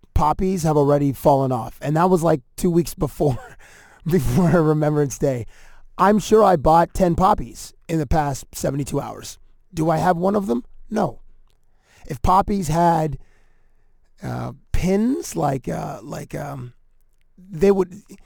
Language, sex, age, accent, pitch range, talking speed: English, male, 30-49, American, 130-165 Hz, 145 wpm